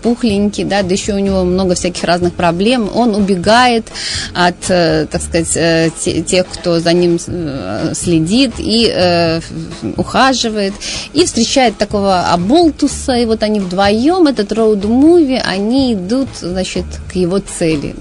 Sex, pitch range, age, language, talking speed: female, 180-240 Hz, 30-49, Russian, 140 wpm